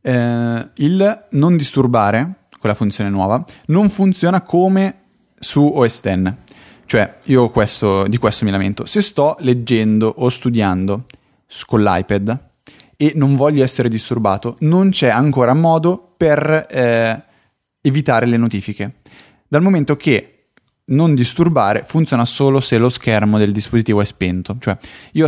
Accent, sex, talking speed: native, male, 140 wpm